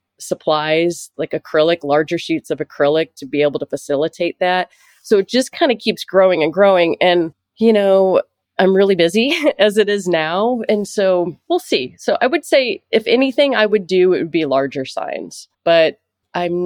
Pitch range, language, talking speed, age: 160-200 Hz, English, 185 wpm, 30-49